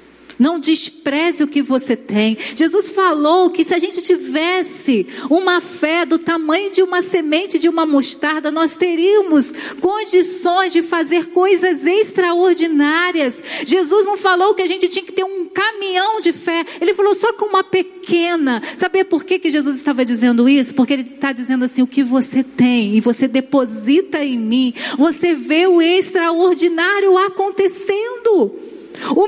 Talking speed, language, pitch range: 160 wpm, Portuguese, 275-365 Hz